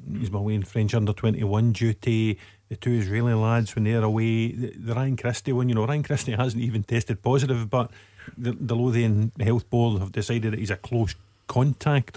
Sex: male